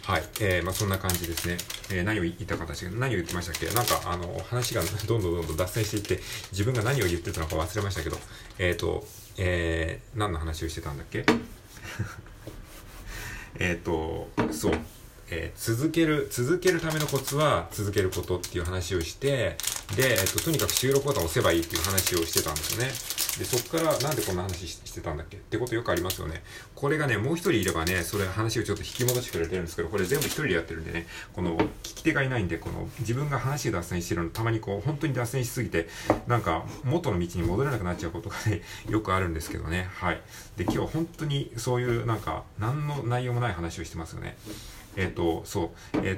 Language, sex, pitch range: Japanese, male, 85-120 Hz